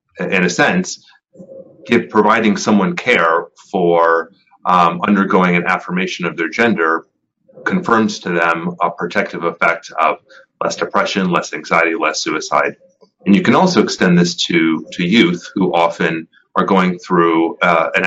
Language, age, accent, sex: English, 30-49, American, male